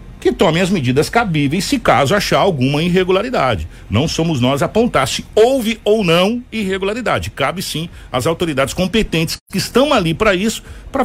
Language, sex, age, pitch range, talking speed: Portuguese, male, 60-79, 145-215 Hz, 170 wpm